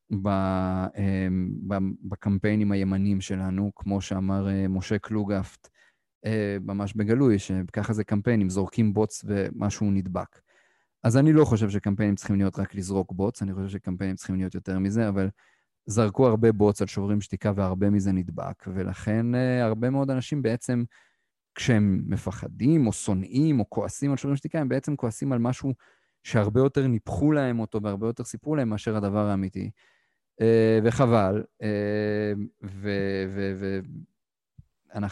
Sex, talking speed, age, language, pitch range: male, 115 wpm, 30-49, Hebrew, 100-115 Hz